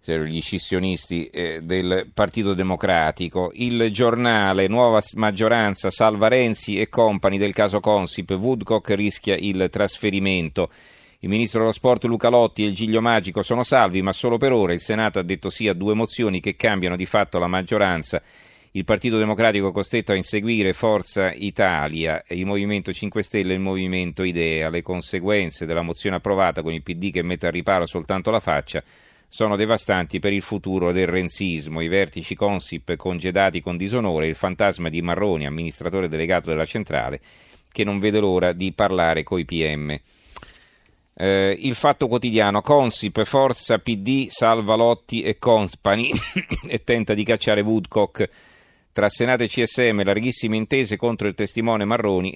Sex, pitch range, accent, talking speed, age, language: male, 90-110 Hz, native, 155 wpm, 40-59, Italian